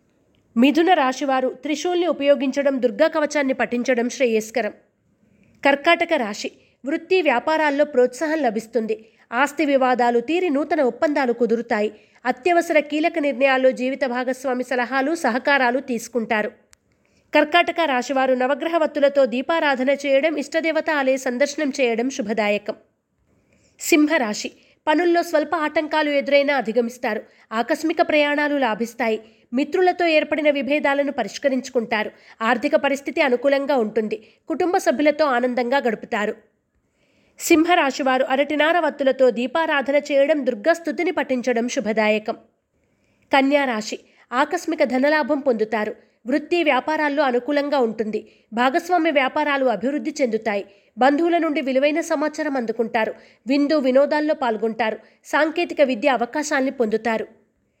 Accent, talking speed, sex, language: native, 90 wpm, female, Telugu